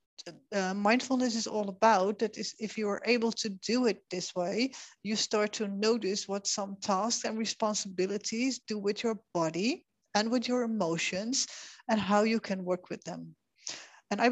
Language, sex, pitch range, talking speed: English, female, 195-235 Hz, 175 wpm